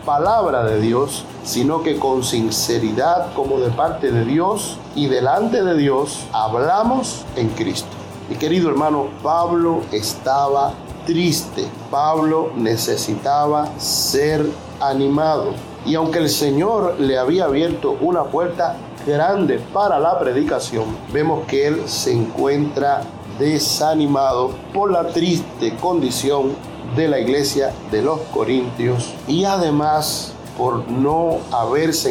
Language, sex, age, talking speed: Spanish, male, 50-69, 120 wpm